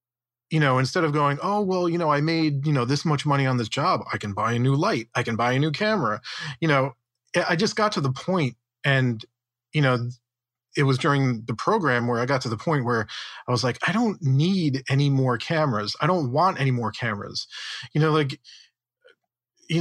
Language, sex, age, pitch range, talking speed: English, male, 40-59, 120-150 Hz, 220 wpm